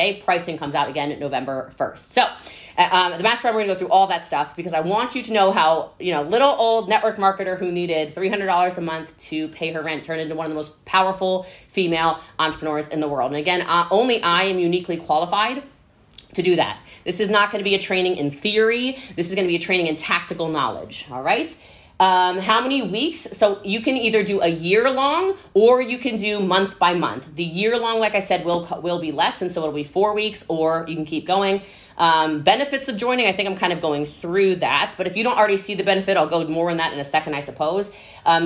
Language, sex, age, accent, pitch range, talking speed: English, female, 20-39, American, 165-215 Hz, 245 wpm